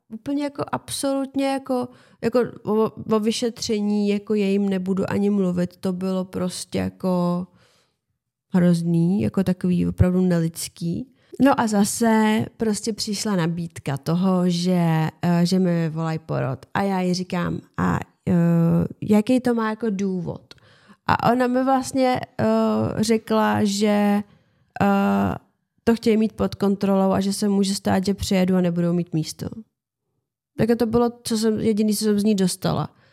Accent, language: native, Czech